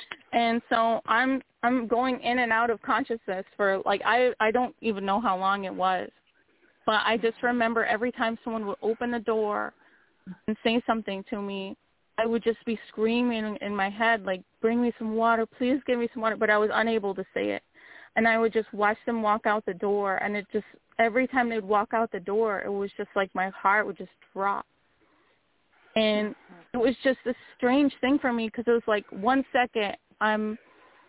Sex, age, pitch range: female, 30-49, 205-235 Hz